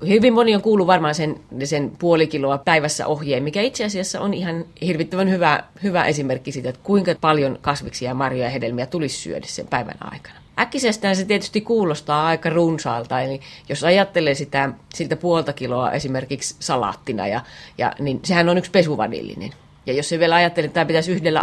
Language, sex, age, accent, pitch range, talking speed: Finnish, female, 30-49, native, 145-190 Hz, 175 wpm